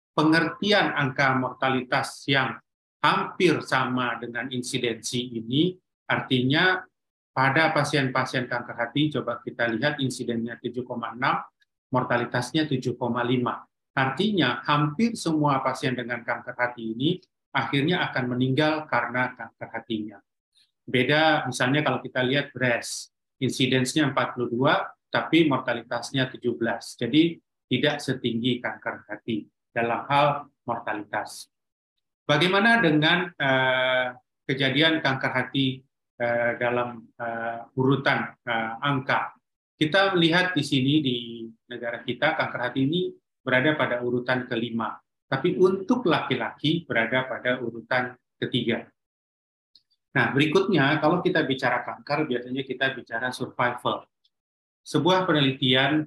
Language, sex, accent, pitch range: Indonesian, male, native, 120-145 Hz